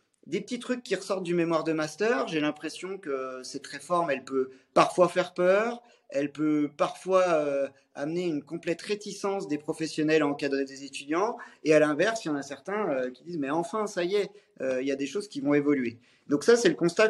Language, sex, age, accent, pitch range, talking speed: French, male, 30-49, French, 135-185 Hz, 220 wpm